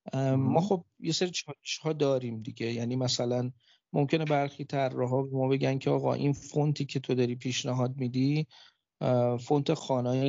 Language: Persian